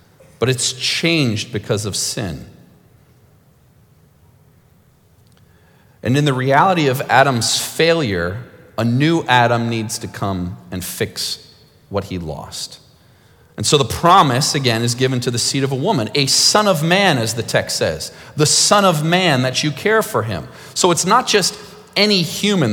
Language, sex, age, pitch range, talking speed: English, male, 40-59, 120-160 Hz, 160 wpm